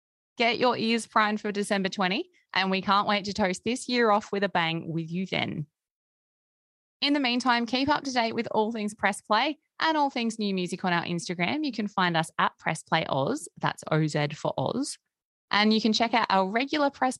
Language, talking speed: English, 215 wpm